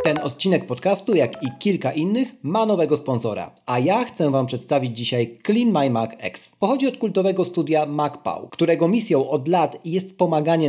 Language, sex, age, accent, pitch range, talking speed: Polish, male, 40-59, native, 130-180 Hz, 175 wpm